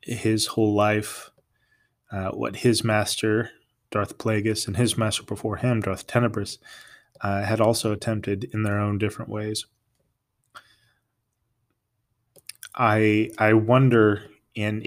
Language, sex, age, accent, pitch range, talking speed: English, male, 20-39, American, 100-115 Hz, 115 wpm